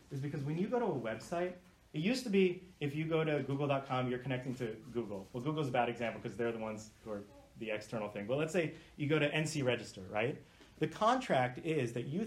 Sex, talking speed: male, 240 wpm